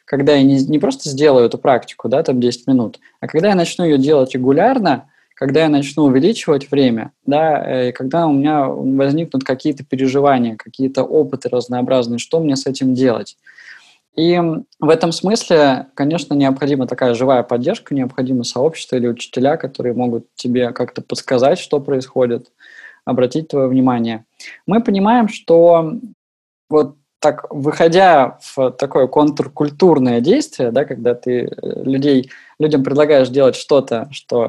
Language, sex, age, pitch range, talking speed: Russian, male, 20-39, 125-155 Hz, 140 wpm